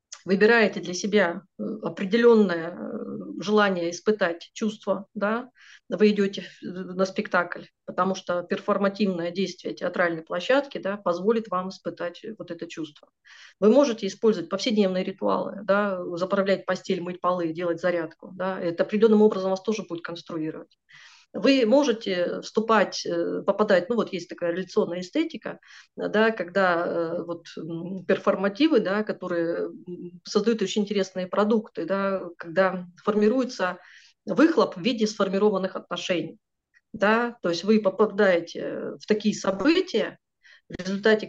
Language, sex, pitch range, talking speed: Russian, female, 180-220 Hz, 110 wpm